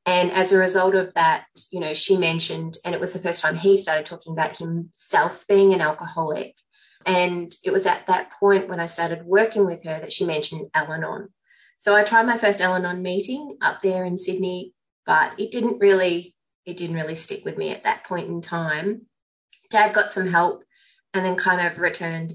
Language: English